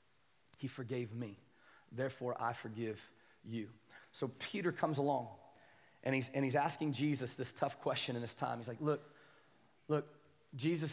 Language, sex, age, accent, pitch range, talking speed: English, male, 30-49, American, 140-185 Hz, 155 wpm